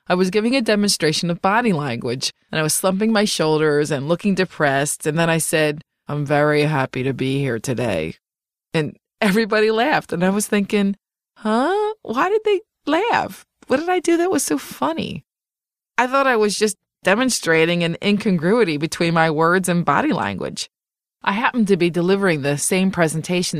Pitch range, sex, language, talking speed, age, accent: 155-210 Hz, female, English, 180 wpm, 20-39, American